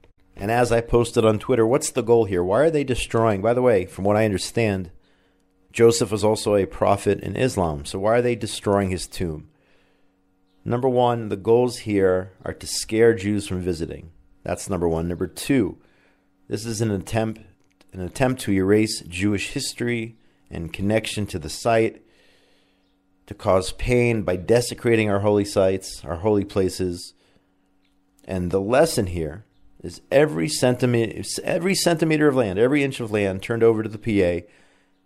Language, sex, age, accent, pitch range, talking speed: English, male, 40-59, American, 95-115 Hz, 170 wpm